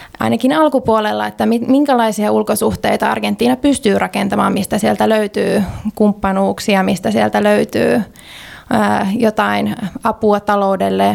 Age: 20-39